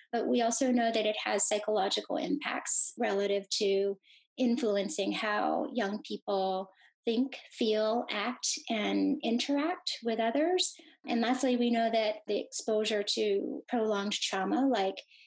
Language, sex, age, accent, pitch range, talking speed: English, female, 30-49, American, 205-255 Hz, 130 wpm